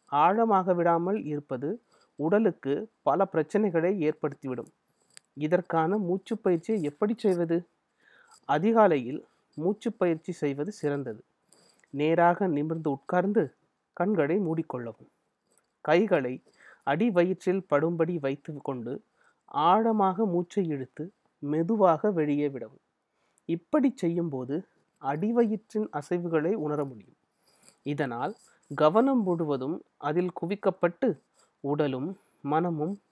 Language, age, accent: Tamil, 30-49, native